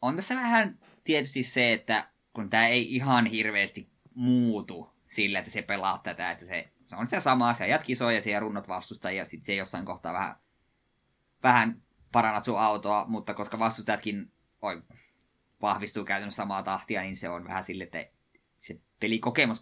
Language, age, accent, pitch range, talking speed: Finnish, 20-39, native, 100-125 Hz, 170 wpm